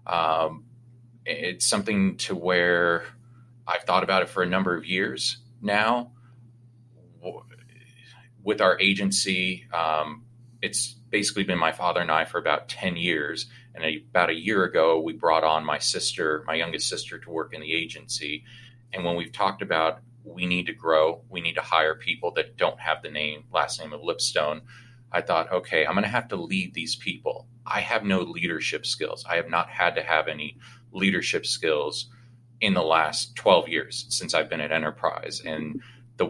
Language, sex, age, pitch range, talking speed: English, male, 30-49, 85-120 Hz, 180 wpm